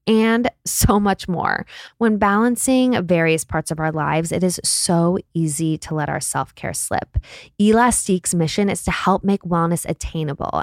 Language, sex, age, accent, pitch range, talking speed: English, female, 20-39, American, 165-210 Hz, 160 wpm